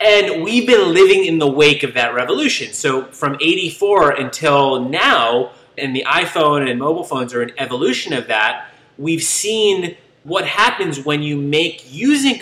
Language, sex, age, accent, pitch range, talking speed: English, male, 30-49, American, 145-240 Hz, 165 wpm